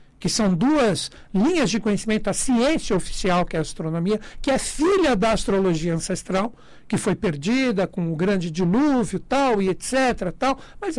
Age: 60-79